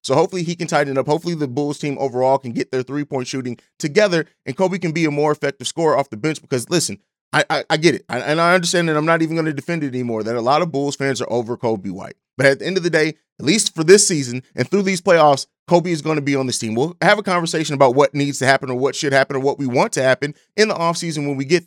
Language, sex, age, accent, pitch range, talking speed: English, male, 30-49, American, 135-170 Hz, 295 wpm